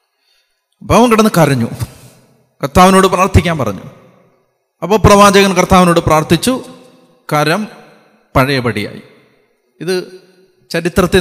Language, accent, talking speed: Malayalam, native, 80 wpm